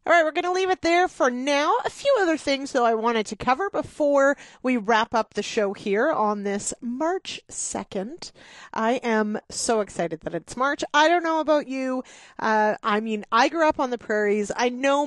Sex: female